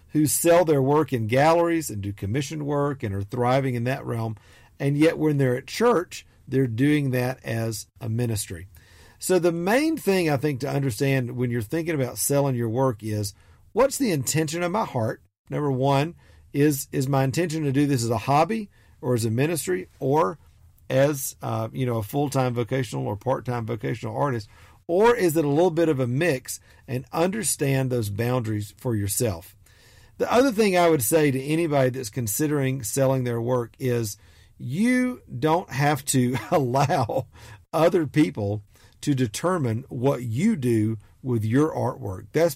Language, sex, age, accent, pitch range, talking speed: English, male, 50-69, American, 110-150 Hz, 175 wpm